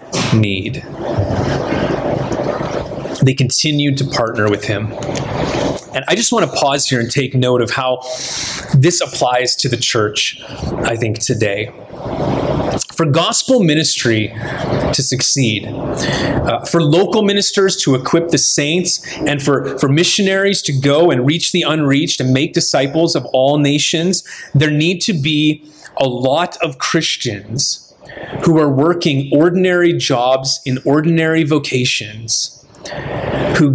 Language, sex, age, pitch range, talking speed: English, male, 30-49, 130-160 Hz, 130 wpm